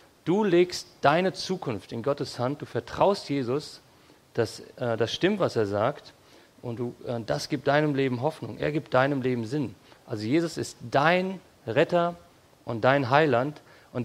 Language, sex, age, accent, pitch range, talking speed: English, male, 40-59, German, 120-150 Hz, 165 wpm